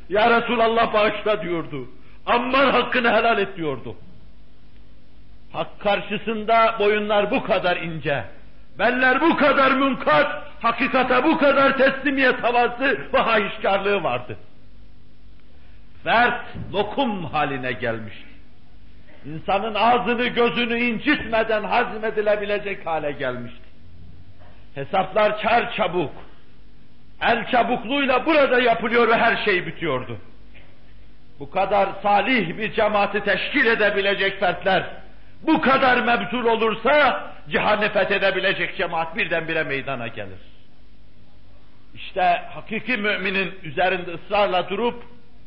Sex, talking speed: male, 90 wpm